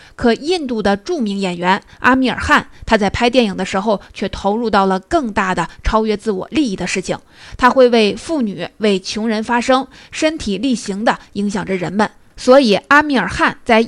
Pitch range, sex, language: 195-250 Hz, female, Chinese